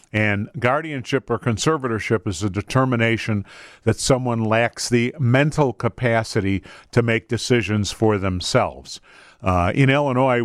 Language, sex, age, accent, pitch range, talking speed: English, male, 50-69, American, 105-130 Hz, 120 wpm